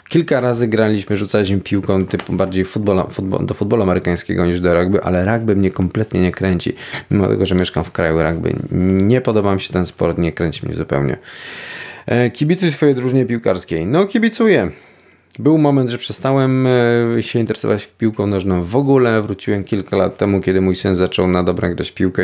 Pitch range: 90-115 Hz